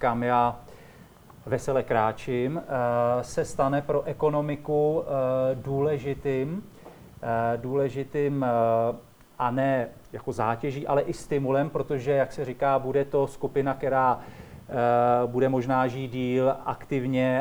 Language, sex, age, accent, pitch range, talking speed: Czech, male, 40-59, native, 130-145 Hz, 105 wpm